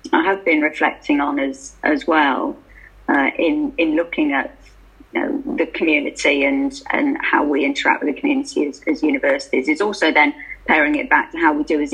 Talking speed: 195 wpm